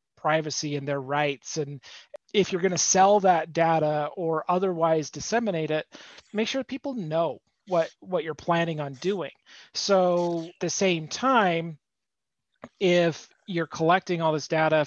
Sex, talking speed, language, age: male, 155 wpm, English, 30-49